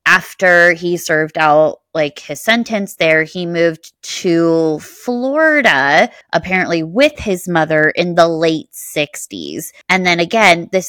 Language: English